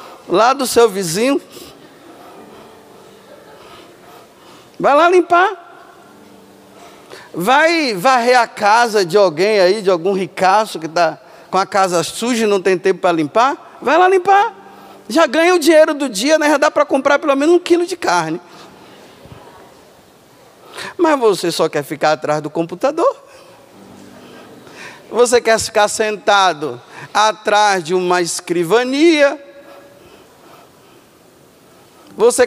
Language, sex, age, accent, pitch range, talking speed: Portuguese, male, 50-69, Brazilian, 205-325 Hz, 120 wpm